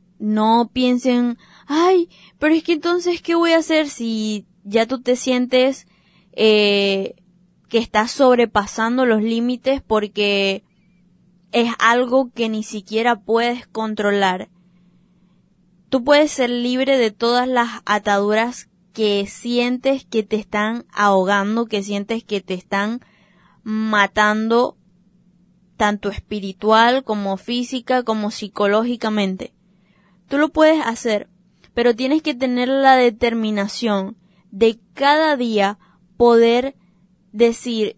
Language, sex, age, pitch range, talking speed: Spanish, female, 20-39, 195-245 Hz, 110 wpm